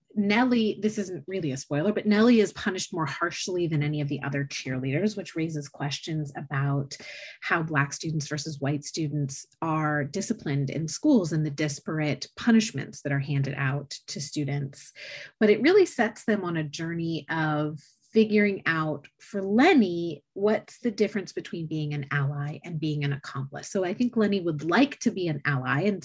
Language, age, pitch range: English, 30-49, 150-210 Hz